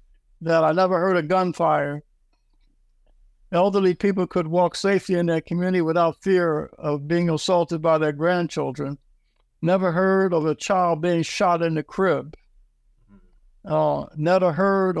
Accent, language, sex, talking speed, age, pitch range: American, English, male, 140 wpm, 60-79, 155-185 Hz